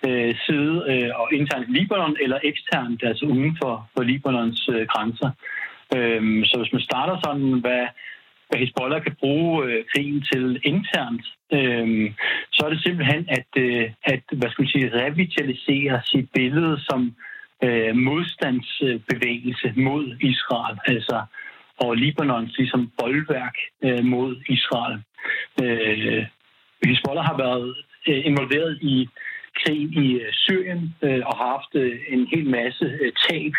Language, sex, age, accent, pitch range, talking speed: Danish, male, 60-79, native, 125-150 Hz, 115 wpm